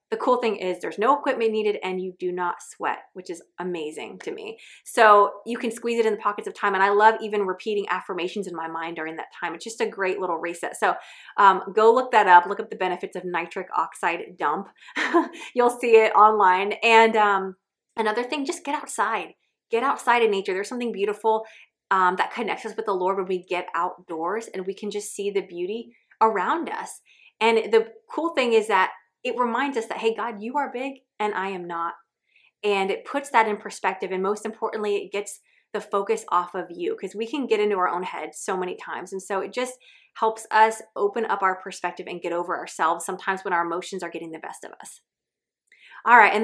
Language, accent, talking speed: English, American, 220 wpm